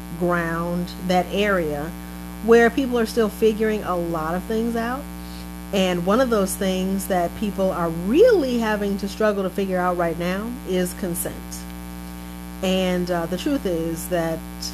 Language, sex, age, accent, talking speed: English, female, 40-59, American, 155 wpm